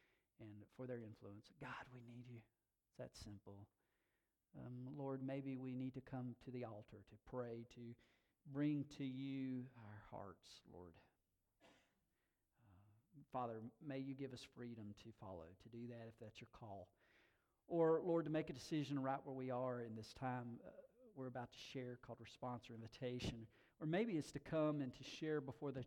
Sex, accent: male, American